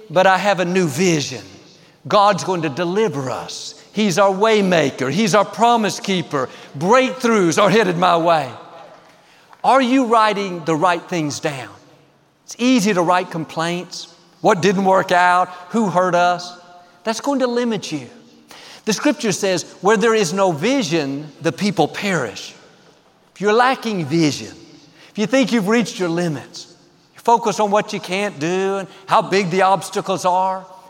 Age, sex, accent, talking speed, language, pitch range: 50-69, male, American, 160 wpm, English, 165-210 Hz